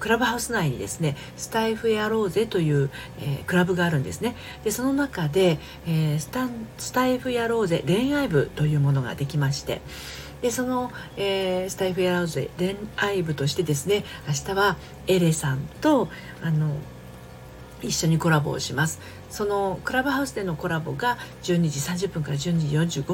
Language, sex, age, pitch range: Japanese, female, 40-59, 150-205 Hz